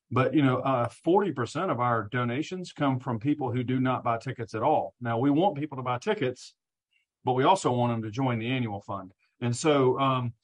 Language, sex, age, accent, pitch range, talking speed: English, male, 40-59, American, 120-145 Hz, 220 wpm